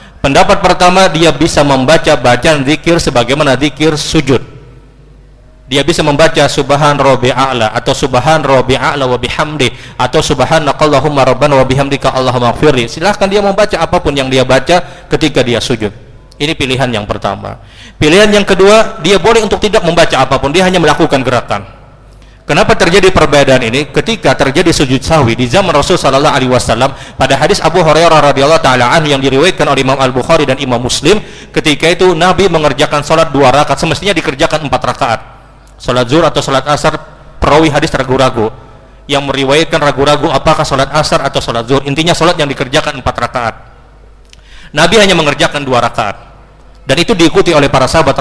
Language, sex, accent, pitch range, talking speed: Indonesian, male, native, 130-160 Hz, 155 wpm